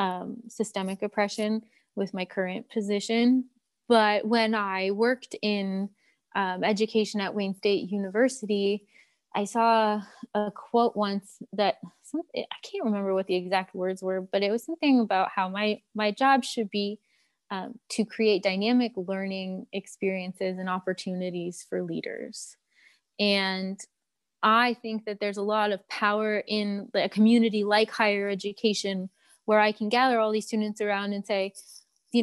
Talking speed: 150 wpm